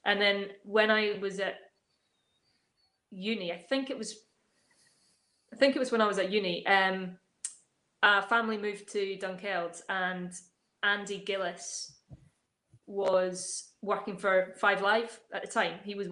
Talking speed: 145 wpm